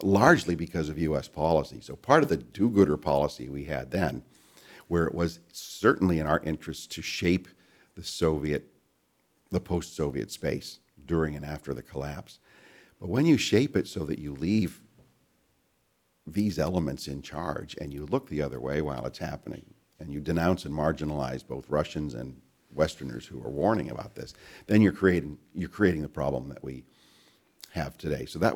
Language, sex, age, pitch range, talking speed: English, male, 50-69, 70-90 Hz, 170 wpm